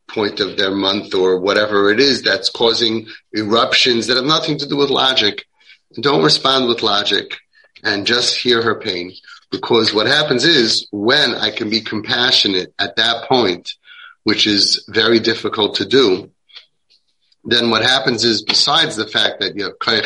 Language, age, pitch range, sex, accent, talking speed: English, 30-49, 105-125 Hz, male, American, 160 wpm